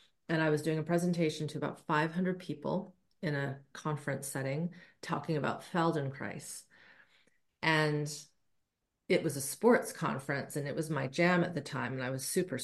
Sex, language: female, English